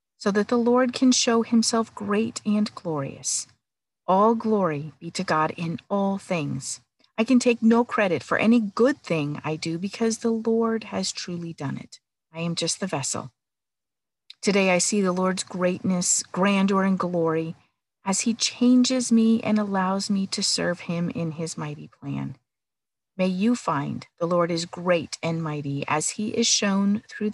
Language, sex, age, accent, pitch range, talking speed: English, female, 40-59, American, 160-210 Hz, 170 wpm